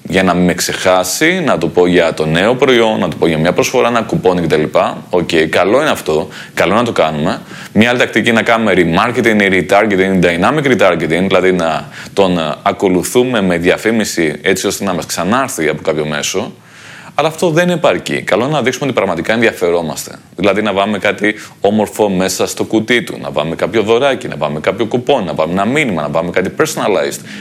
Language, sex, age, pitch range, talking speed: Greek, male, 30-49, 90-110 Hz, 200 wpm